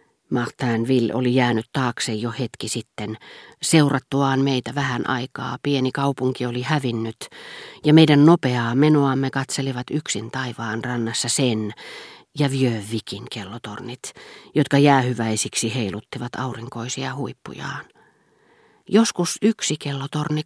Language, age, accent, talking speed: Finnish, 40-59, native, 105 wpm